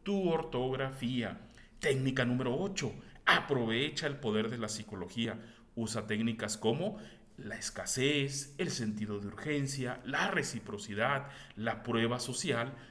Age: 40-59